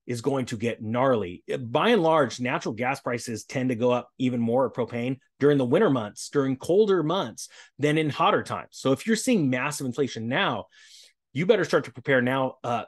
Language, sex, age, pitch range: English, male, 30-49, 120-150 Hz